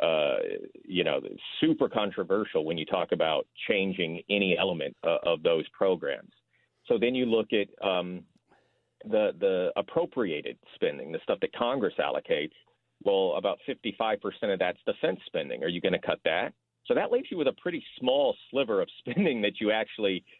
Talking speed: 175 wpm